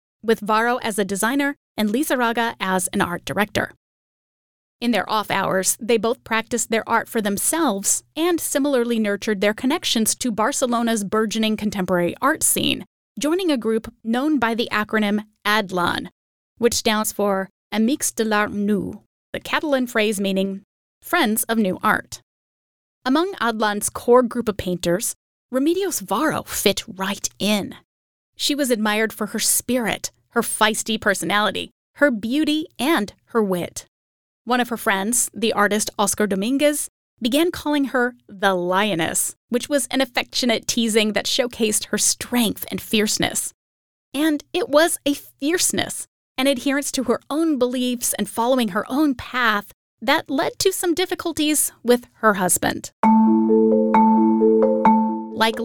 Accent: American